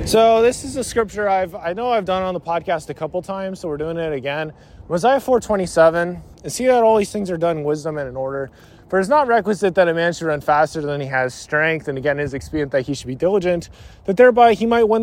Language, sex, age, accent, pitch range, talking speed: English, male, 20-39, American, 155-210 Hz, 265 wpm